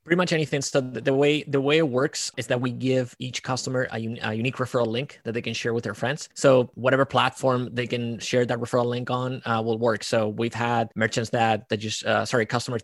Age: 20-39